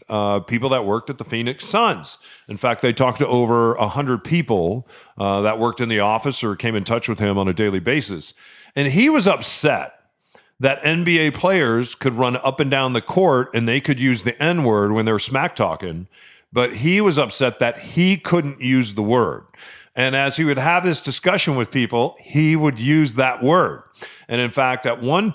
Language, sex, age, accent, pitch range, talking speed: English, male, 40-59, American, 110-150 Hz, 205 wpm